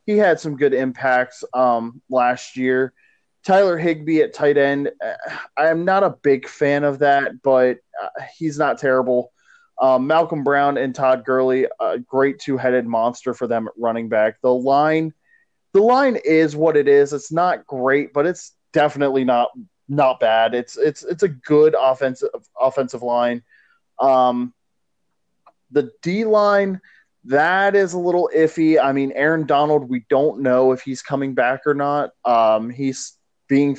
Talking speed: 160 wpm